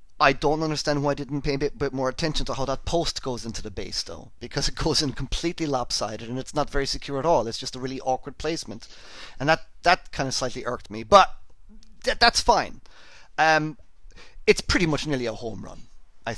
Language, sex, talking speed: English, male, 225 wpm